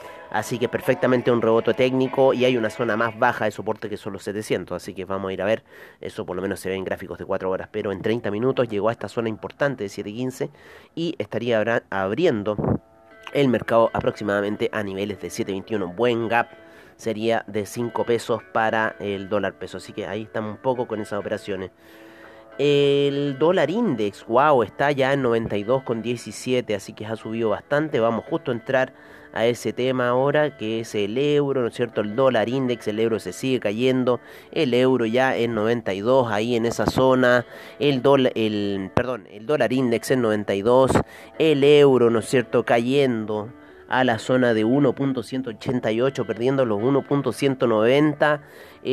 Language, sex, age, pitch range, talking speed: Spanish, male, 30-49, 105-130 Hz, 175 wpm